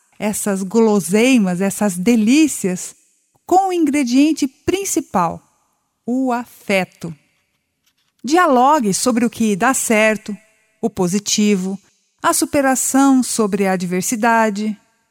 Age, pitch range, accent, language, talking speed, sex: 50-69, 200-275 Hz, Brazilian, Portuguese, 90 wpm, female